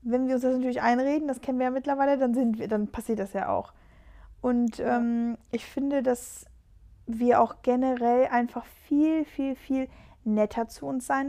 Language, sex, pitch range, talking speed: German, female, 225-265 Hz, 185 wpm